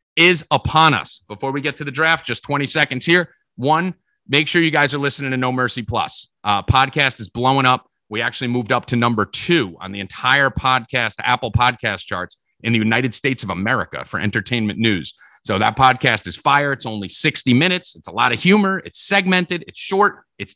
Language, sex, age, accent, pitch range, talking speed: English, male, 30-49, American, 110-145 Hz, 205 wpm